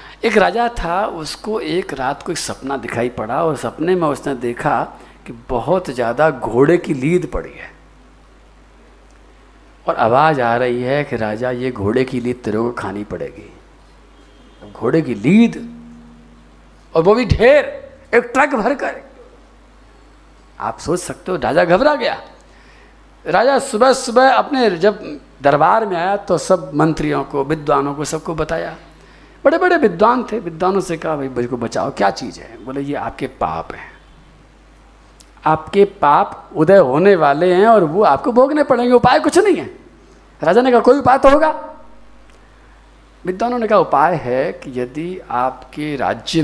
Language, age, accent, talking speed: Hindi, 50-69, native, 160 wpm